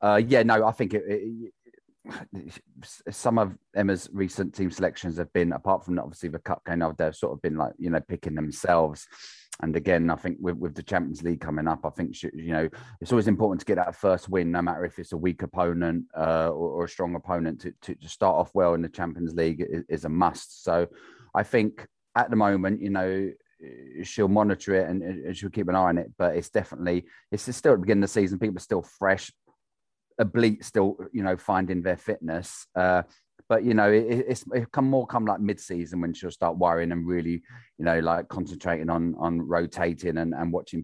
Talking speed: 215 wpm